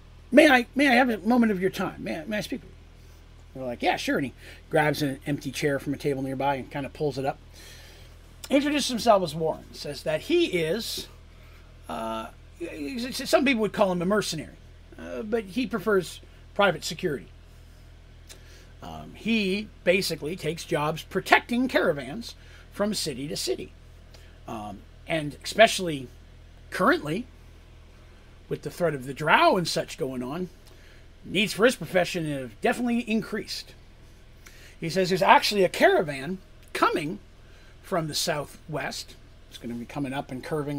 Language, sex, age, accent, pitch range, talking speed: English, male, 40-59, American, 125-195 Hz, 160 wpm